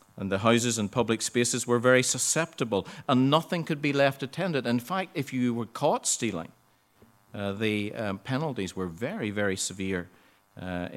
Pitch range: 100-125 Hz